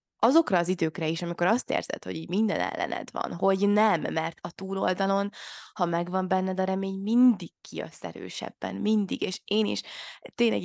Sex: female